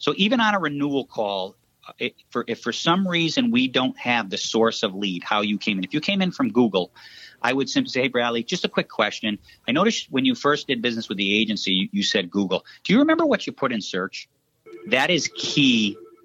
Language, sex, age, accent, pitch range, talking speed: English, male, 40-59, American, 110-170 Hz, 225 wpm